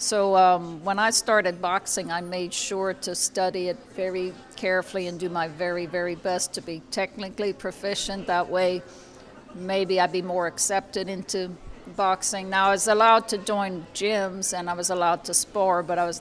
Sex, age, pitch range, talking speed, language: female, 60-79, 180-205 Hz, 180 wpm, English